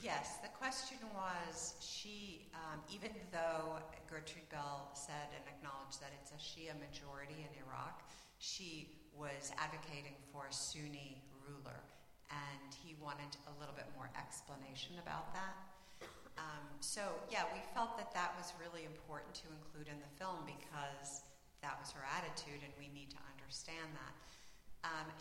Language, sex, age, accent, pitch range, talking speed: English, female, 50-69, American, 140-160 Hz, 150 wpm